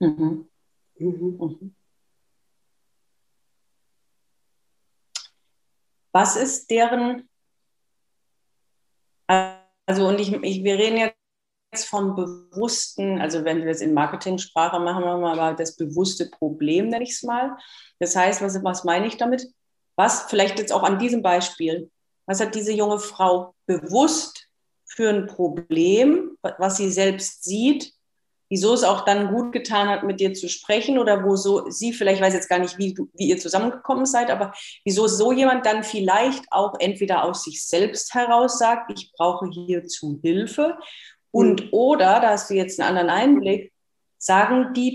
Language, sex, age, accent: German, female, 40-59, German